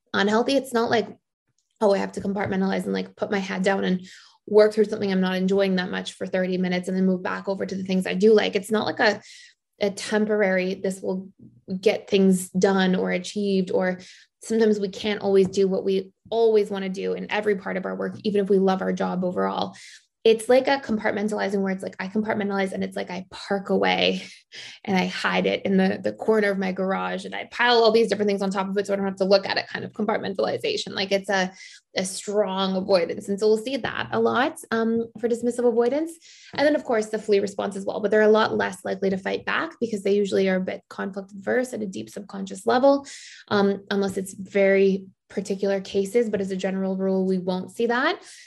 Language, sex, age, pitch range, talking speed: English, female, 20-39, 190-220 Hz, 230 wpm